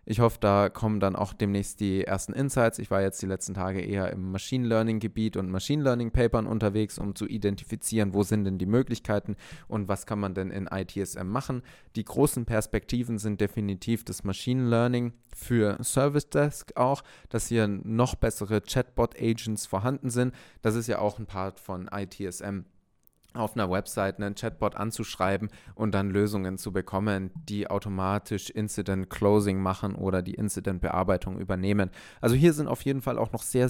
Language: German